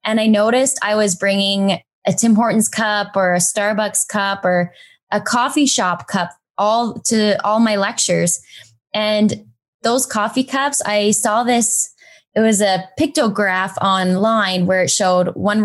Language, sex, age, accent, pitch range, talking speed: English, female, 10-29, American, 190-220 Hz, 155 wpm